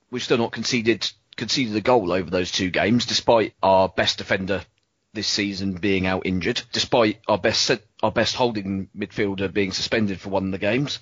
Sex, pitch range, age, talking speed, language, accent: male, 100-125 Hz, 30-49, 185 wpm, English, British